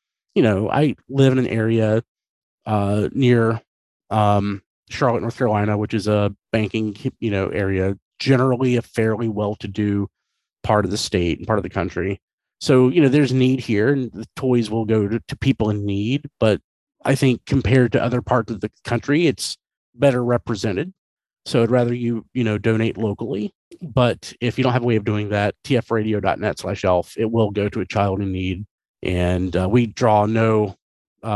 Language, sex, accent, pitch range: English, male, American, 105-125 Hz